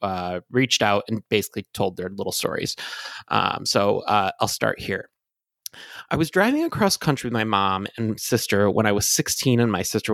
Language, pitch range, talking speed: English, 110-160 Hz, 190 wpm